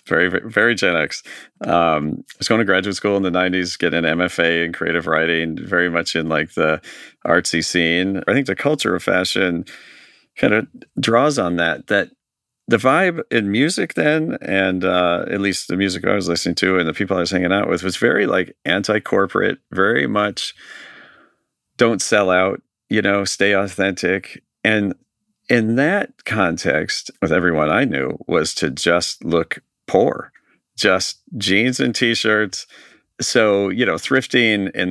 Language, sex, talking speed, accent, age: English, male, 170 wpm, American, 40-59